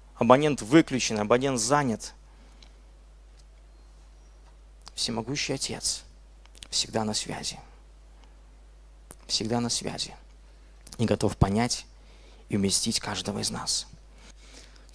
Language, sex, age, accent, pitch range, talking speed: Russian, male, 20-39, native, 75-125 Hz, 85 wpm